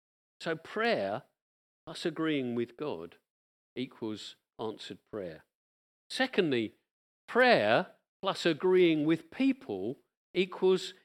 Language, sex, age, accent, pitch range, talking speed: English, male, 50-69, British, 140-215 Hz, 85 wpm